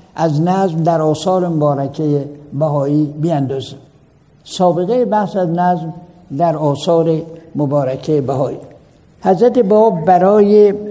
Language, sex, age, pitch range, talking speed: Persian, male, 60-79, 155-200 Hz, 100 wpm